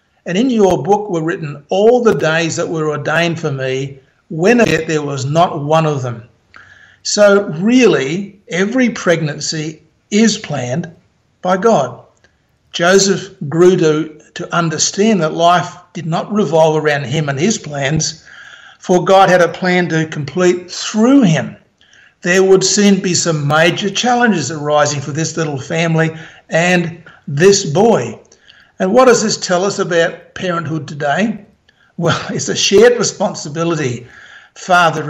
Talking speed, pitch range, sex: 145 wpm, 155-200 Hz, male